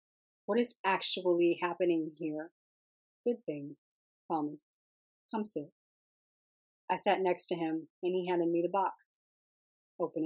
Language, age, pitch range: English, 30-49, 160-195 Hz